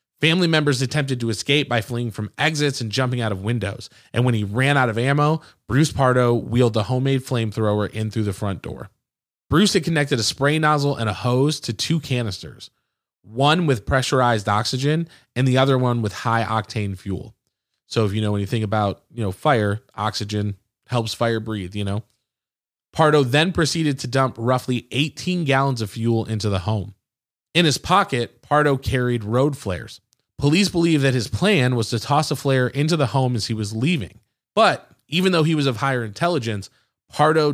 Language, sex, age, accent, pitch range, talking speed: English, male, 20-39, American, 110-140 Hz, 185 wpm